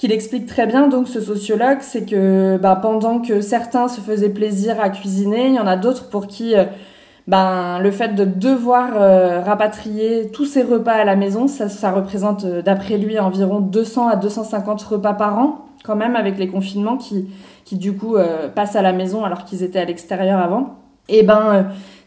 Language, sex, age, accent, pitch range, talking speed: French, female, 20-39, French, 190-225 Hz, 205 wpm